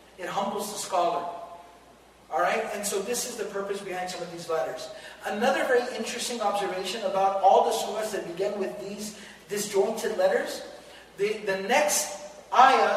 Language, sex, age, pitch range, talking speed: Malay, male, 40-59, 190-245 Hz, 160 wpm